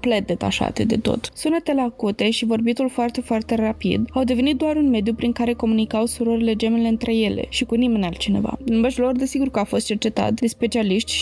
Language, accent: Romanian, native